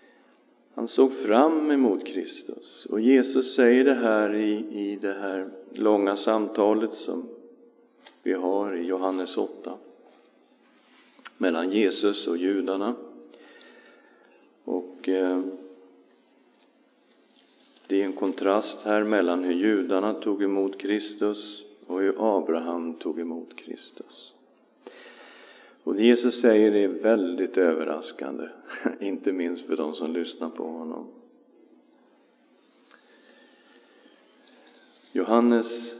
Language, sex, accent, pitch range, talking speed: English, male, Swedish, 95-115 Hz, 100 wpm